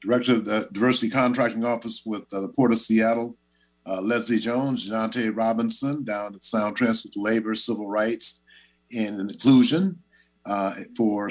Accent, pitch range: American, 100-125 Hz